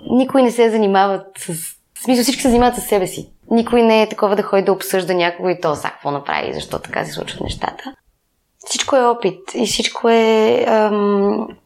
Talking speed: 195 wpm